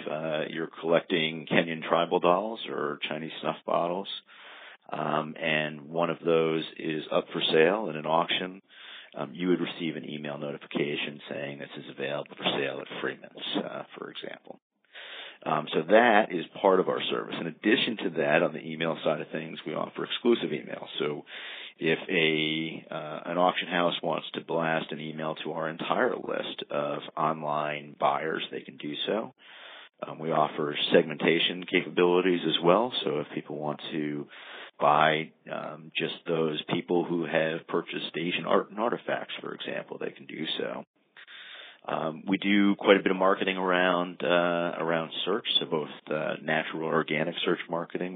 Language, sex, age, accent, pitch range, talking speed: English, male, 50-69, American, 75-90 Hz, 165 wpm